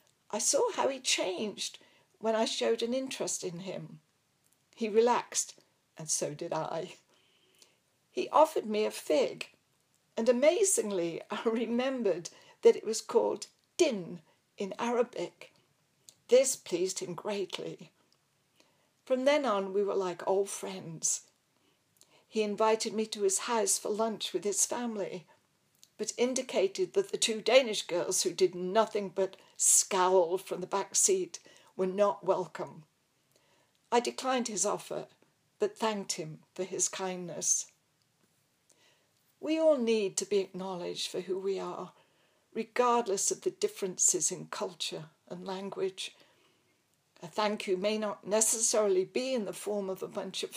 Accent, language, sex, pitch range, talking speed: British, English, female, 195-265 Hz, 140 wpm